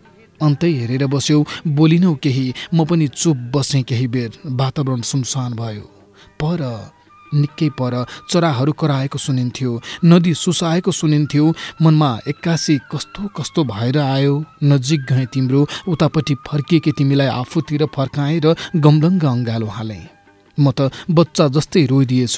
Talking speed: 125 wpm